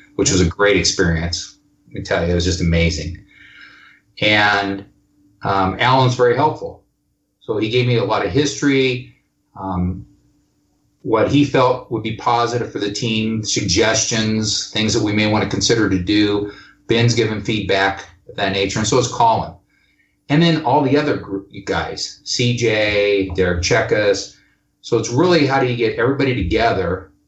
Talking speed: 165 wpm